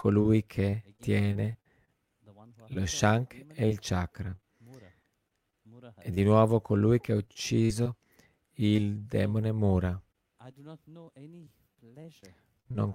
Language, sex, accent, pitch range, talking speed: Italian, male, native, 100-120 Hz, 90 wpm